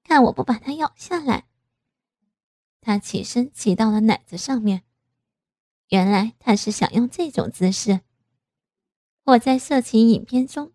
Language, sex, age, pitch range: Chinese, female, 20-39, 190-245 Hz